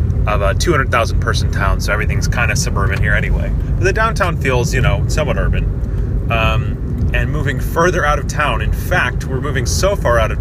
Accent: American